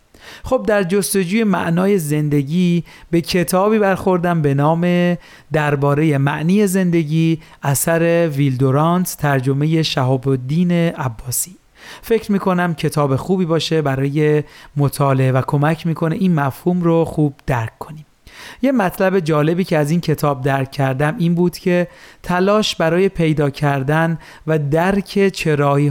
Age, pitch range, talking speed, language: 40-59, 145-180 Hz, 125 wpm, Persian